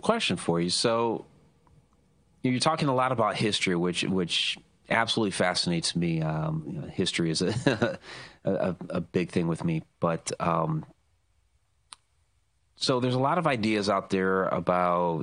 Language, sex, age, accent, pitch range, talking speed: English, male, 30-49, American, 85-110 Hz, 155 wpm